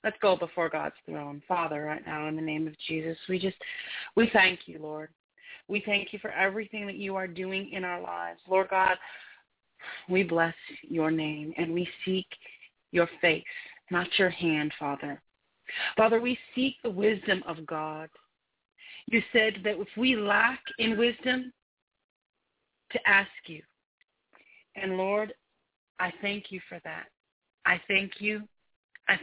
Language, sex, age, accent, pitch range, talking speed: English, female, 30-49, American, 165-205 Hz, 155 wpm